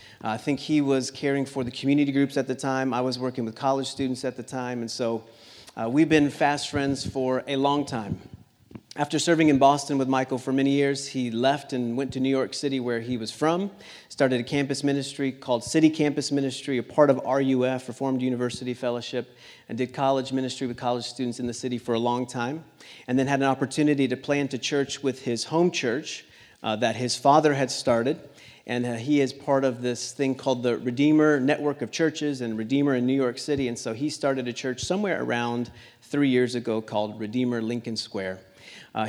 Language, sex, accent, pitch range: English, male, American, 120-140 Hz